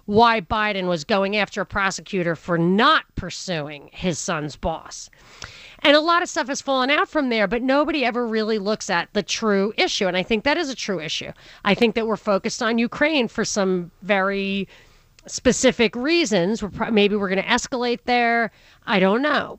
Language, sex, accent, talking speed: English, female, American, 185 wpm